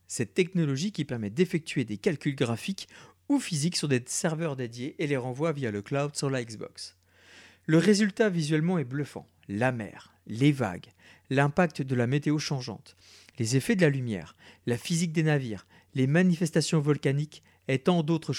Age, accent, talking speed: 40-59, French, 170 wpm